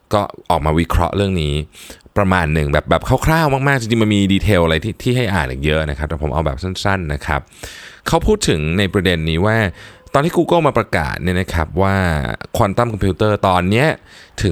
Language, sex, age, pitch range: Thai, male, 20-39, 80-105 Hz